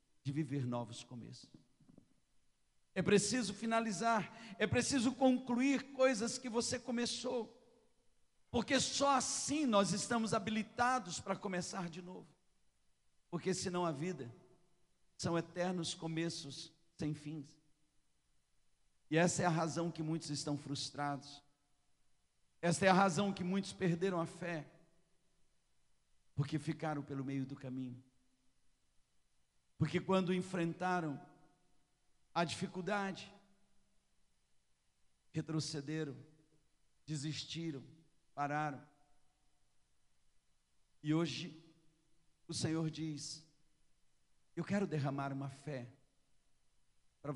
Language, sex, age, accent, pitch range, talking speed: Portuguese, male, 50-69, Brazilian, 130-180 Hz, 95 wpm